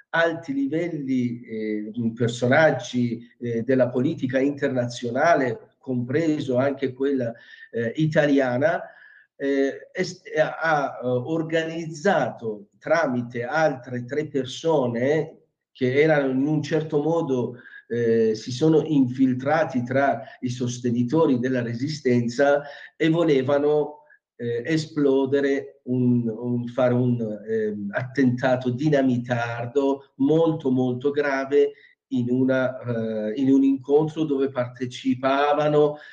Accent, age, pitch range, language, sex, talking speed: native, 50-69, 125-145 Hz, Italian, male, 95 wpm